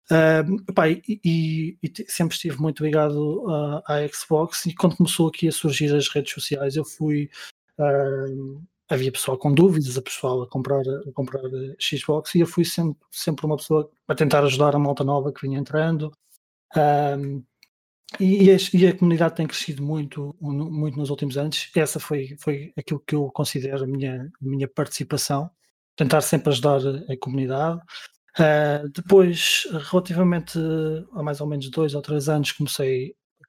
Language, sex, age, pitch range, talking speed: Portuguese, male, 20-39, 140-160 Hz, 175 wpm